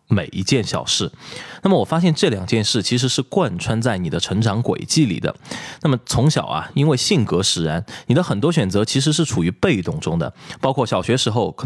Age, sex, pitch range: 20-39, male, 105-155 Hz